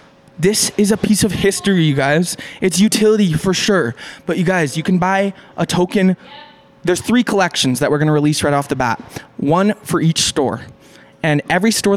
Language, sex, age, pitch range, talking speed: English, male, 20-39, 155-195 Hz, 190 wpm